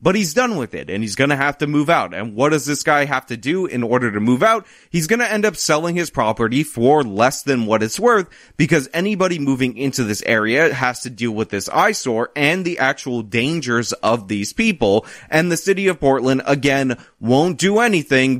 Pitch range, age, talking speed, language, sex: 120-170 Hz, 30-49, 220 wpm, English, male